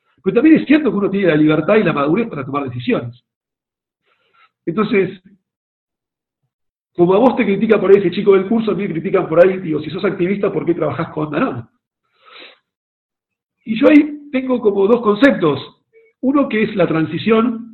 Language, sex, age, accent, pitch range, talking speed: Spanish, male, 50-69, Argentinian, 155-210 Hz, 185 wpm